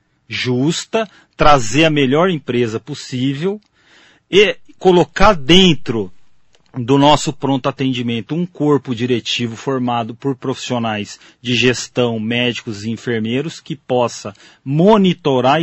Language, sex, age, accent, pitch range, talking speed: Portuguese, male, 40-59, Brazilian, 120-180 Hz, 105 wpm